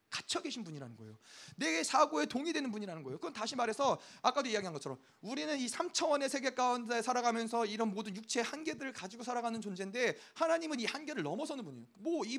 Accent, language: native, Korean